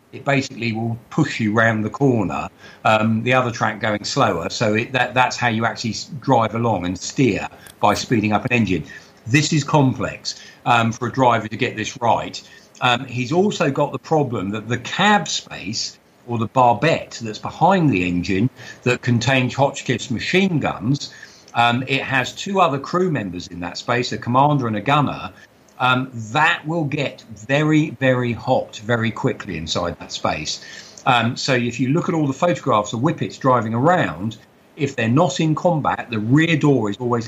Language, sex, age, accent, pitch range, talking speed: English, male, 50-69, British, 110-140 Hz, 180 wpm